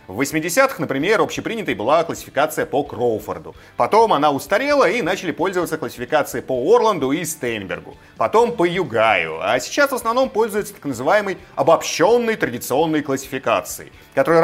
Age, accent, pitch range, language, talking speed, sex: 30-49, native, 135-225 Hz, Russian, 135 wpm, male